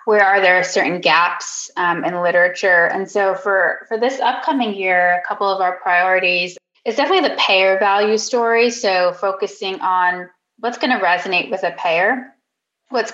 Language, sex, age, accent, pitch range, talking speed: English, female, 20-39, American, 180-210 Hz, 170 wpm